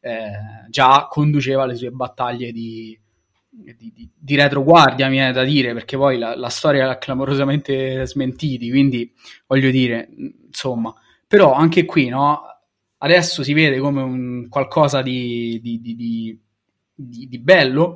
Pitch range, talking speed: 115-140 Hz, 140 wpm